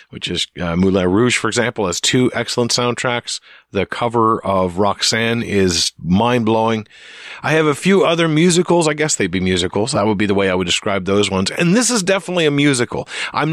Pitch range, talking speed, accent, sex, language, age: 105-160 Hz, 205 wpm, American, male, English, 40-59